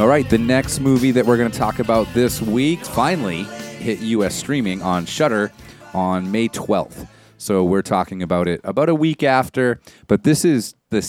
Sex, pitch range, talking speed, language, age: male, 95-125 Hz, 190 wpm, English, 30-49